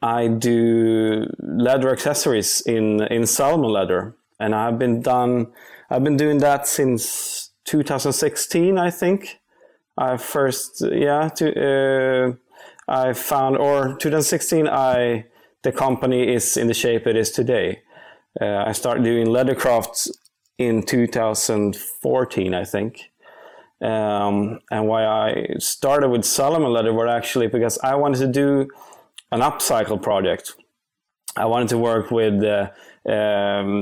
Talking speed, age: 130 wpm, 30-49